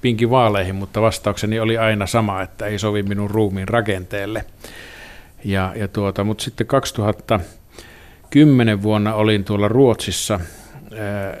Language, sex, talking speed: Finnish, male, 110 wpm